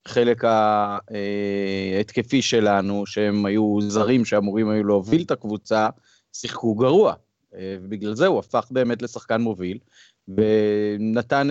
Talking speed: 110 wpm